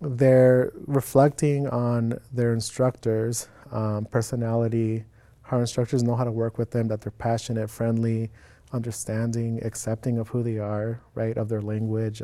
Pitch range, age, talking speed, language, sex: 110-130 Hz, 30-49, 140 wpm, English, male